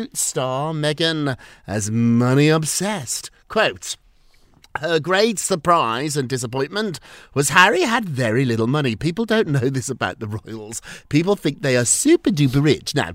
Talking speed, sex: 145 wpm, male